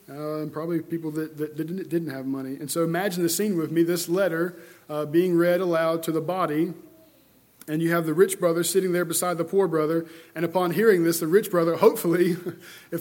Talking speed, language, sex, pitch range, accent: 215 wpm, English, male, 155-175 Hz, American